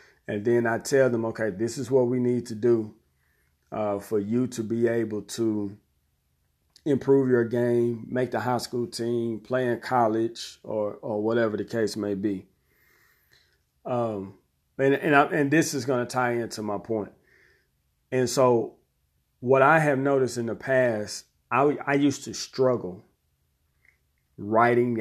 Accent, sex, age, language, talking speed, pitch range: American, male, 40-59, English, 160 wpm, 105-125 Hz